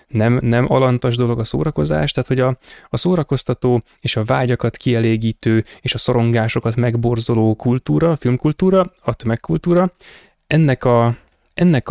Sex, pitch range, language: male, 110-130 Hz, Hungarian